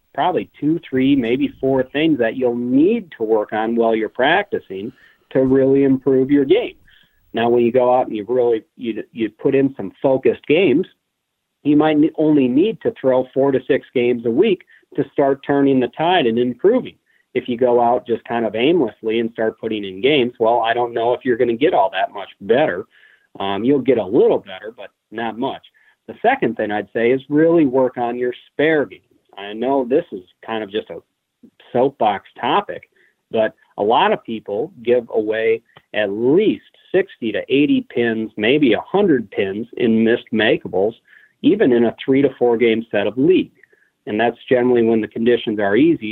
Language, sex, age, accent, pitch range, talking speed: English, male, 40-59, American, 110-135 Hz, 195 wpm